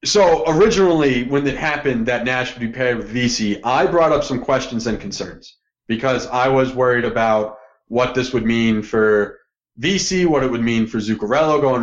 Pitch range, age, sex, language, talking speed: 115-150 Hz, 30-49, male, English, 190 wpm